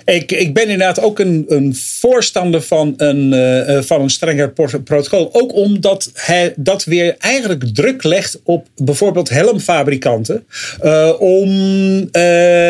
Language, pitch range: English, 145-185 Hz